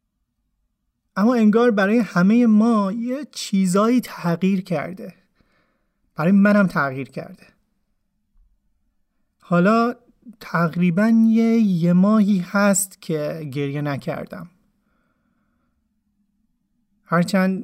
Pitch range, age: 185-225 Hz, 30-49